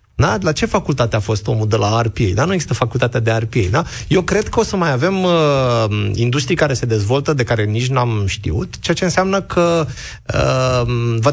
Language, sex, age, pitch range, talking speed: Romanian, male, 30-49, 115-160 Hz, 210 wpm